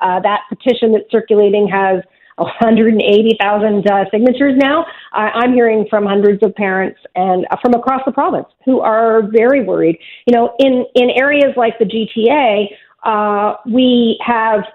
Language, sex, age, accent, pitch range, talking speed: English, female, 40-59, American, 205-265 Hz, 150 wpm